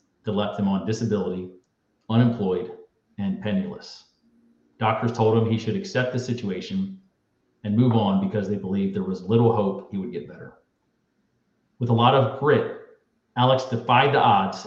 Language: English